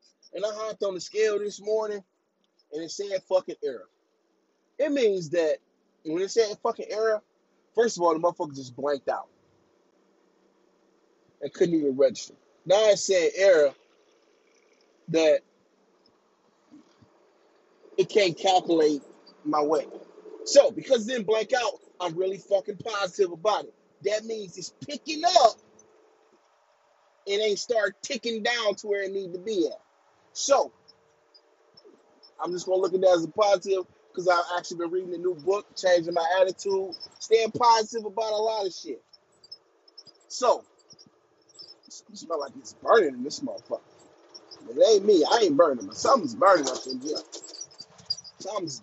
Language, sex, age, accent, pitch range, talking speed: English, male, 30-49, American, 180-295 Hz, 150 wpm